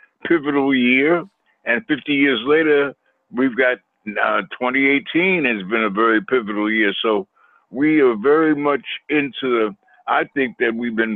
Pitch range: 110-140 Hz